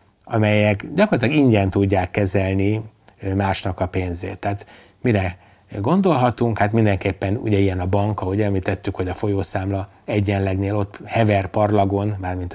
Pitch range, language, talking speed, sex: 100-115 Hz, Hungarian, 130 wpm, male